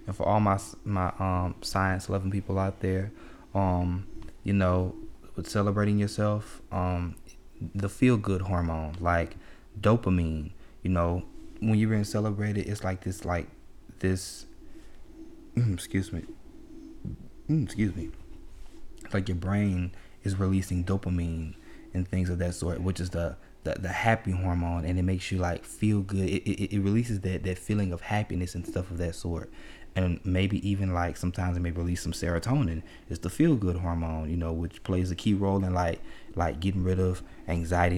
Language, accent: English, American